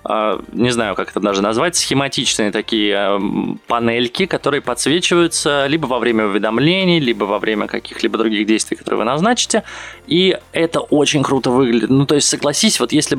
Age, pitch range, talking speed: 20-39, 115-150 Hz, 160 wpm